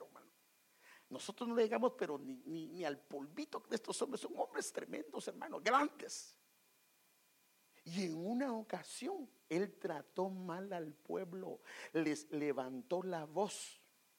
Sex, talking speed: male, 130 wpm